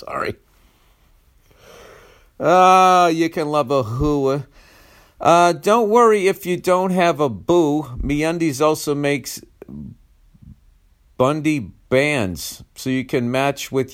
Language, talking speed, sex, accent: English, 110 wpm, male, American